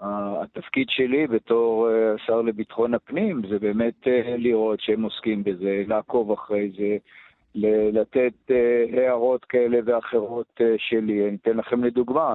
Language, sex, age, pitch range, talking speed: English, male, 50-69, 110-125 Hz, 145 wpm